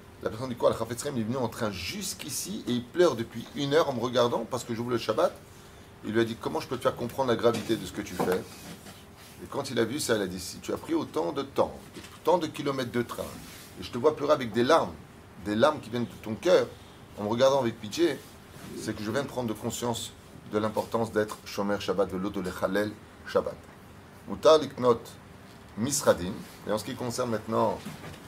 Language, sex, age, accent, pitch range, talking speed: French, male, 30-49, French, 105-125 Hz, 230 wpm